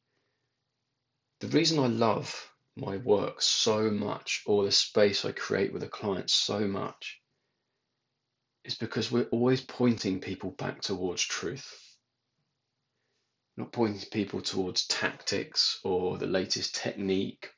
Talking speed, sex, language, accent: 125 wpm, male, English, British